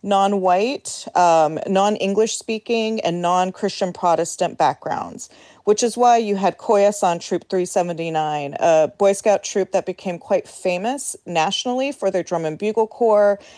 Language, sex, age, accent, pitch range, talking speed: English, female, 40-59, American, 170-205 Hz, 135 wpm